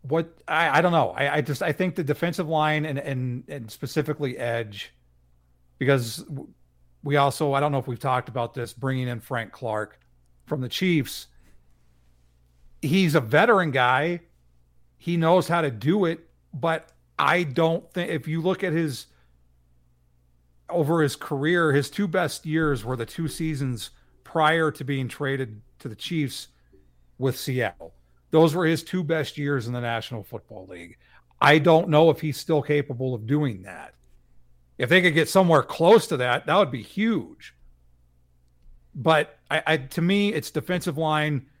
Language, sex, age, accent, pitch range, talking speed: English, male, 40-59, American, 100-155 Hz, 165 wpm